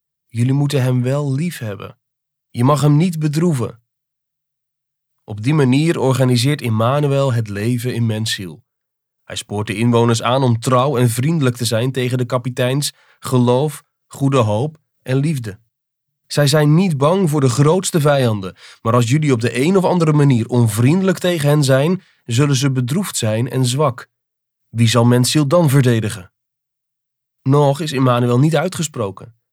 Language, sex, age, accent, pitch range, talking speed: Dutch, male, 30-49, Dutch, 120-145 Hz, 155 wpm